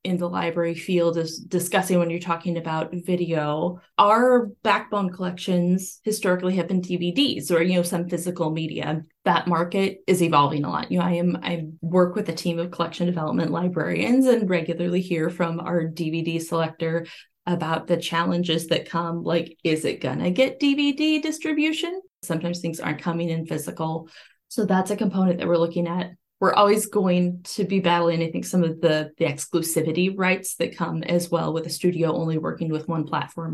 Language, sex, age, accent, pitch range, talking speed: English, female, 20-39, American, 165-190 Hz, 185 wpm